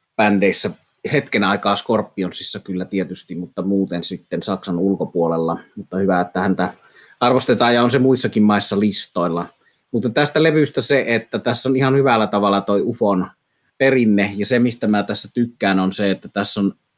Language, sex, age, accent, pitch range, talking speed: Finnish, male, 30-49, native, 95-120 Hz, 160 wpm